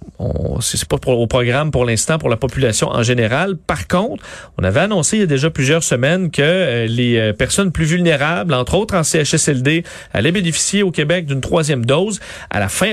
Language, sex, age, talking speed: French, male, 40-59, 205 wpm